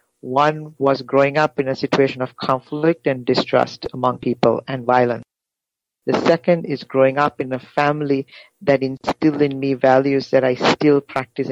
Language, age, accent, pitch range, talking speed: English, 50-69, Indian, 130-145 Hz, 165 wpm